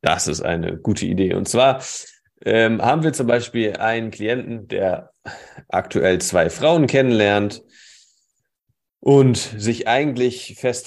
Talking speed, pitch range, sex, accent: 125 wpm, 105-135 Hz, male, German